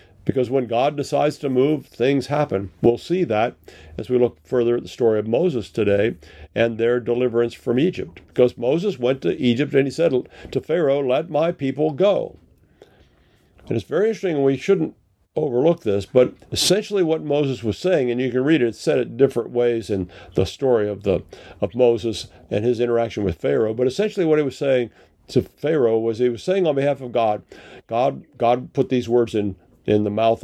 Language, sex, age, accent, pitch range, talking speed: English, male, 50-69, American, 110-145 Hz, 200 wpm